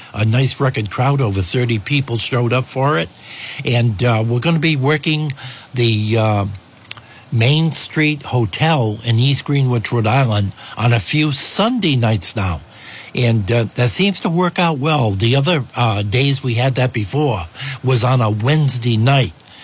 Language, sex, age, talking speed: English, male, 60-79, 170 wpm